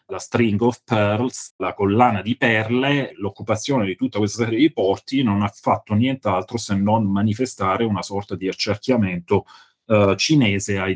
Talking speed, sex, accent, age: 160 wpm, male, native, 30-49